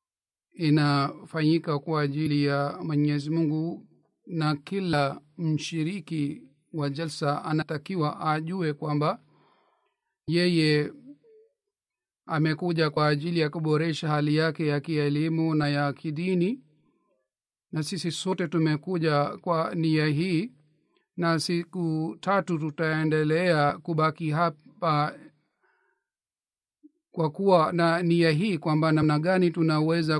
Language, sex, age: Swahili, male, 40-59